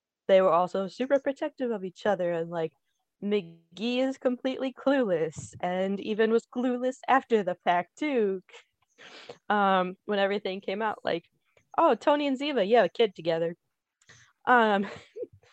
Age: 20-39